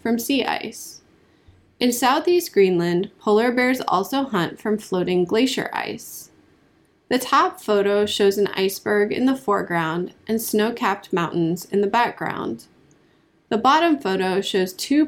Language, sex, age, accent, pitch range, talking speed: English, female, 20-39, American, 185-250 Hz, 135 wpm